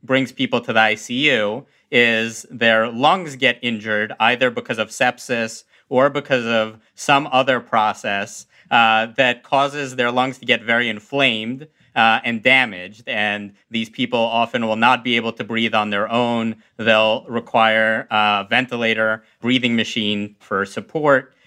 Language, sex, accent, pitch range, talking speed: English, male, American, 110-130 Hz, 150 wpm